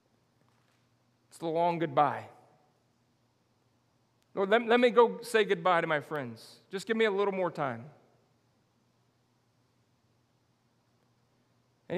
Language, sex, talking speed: English, male, 110 wpm